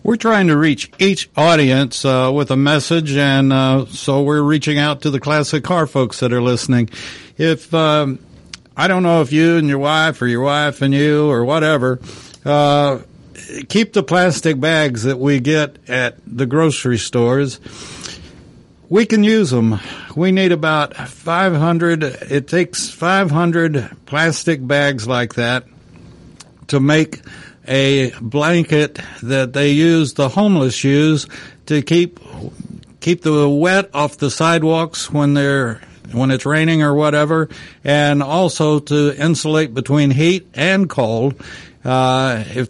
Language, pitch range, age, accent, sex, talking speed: English, 130-160 Hz, 60-79, American, male, 145 wpm